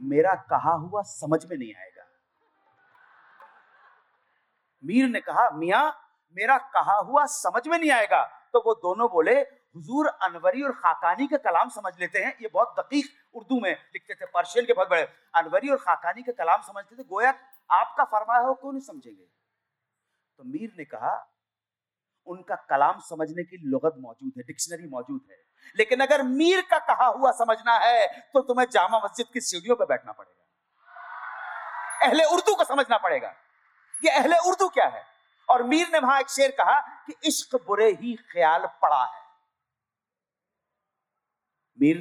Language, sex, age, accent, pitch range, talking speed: Hindi, male, 40-59, native, 175-285 Hz, 155 wpm